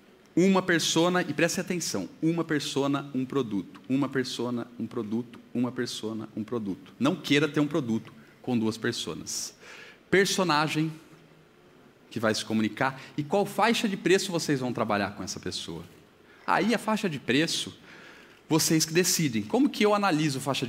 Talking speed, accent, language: 155 wpm, Brazilian, Portuguese